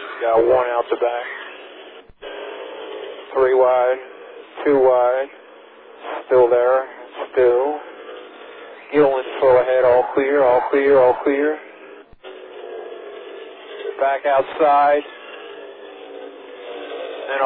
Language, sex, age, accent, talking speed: English, male, 40-59, American, 85 wpm